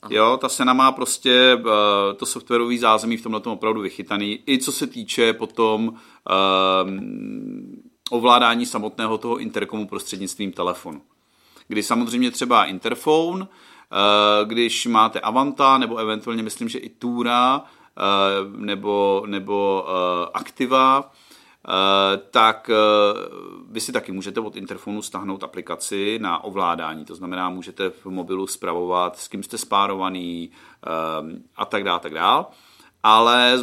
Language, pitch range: Czech, 100-125 Hz